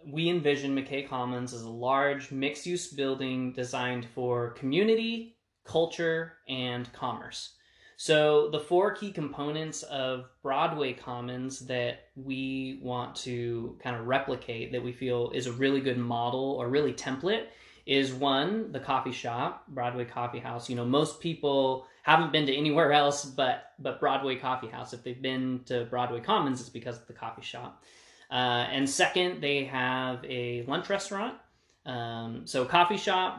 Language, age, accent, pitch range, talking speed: English, 20-39, American, 125-145 Hz, 155 wpm